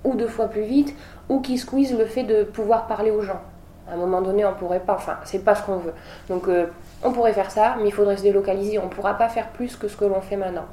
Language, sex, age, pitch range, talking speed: French, female, 20-39, 170-205 Hz, 280 wpm